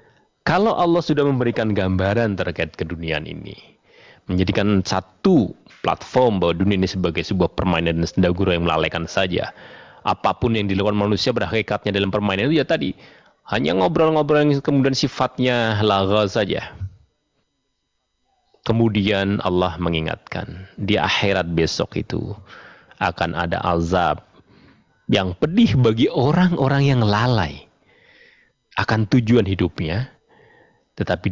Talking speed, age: 115 wpm, 30-49